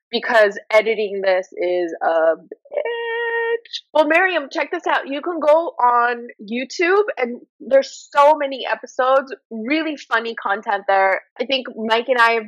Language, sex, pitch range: English, female, 205-310 Hz